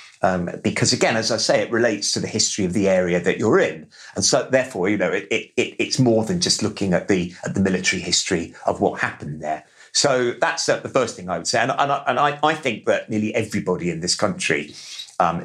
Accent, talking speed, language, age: British, 245 wpm, English, 50-69